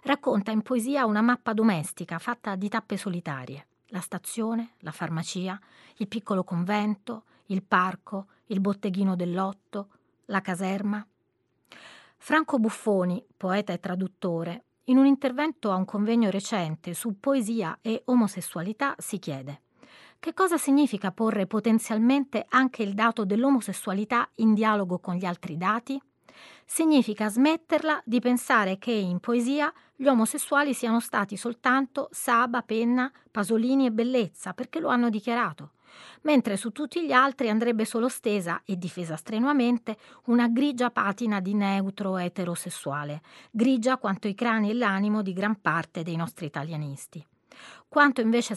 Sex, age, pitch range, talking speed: female, 30-49, 190-245 Hz, 135 wpm